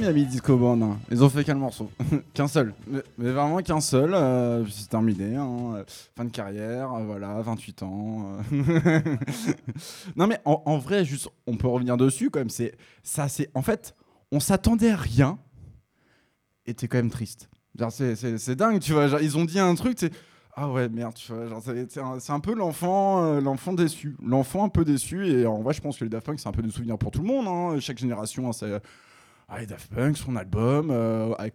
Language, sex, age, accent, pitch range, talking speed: French, male, 20-39, French, 115-165 Hz, 225 wpm